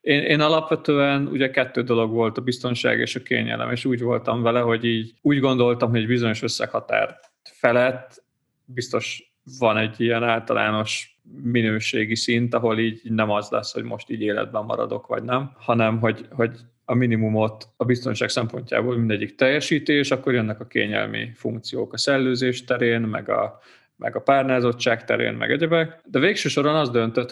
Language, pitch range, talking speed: Hungarian, 115-140 Hz, 165 wpm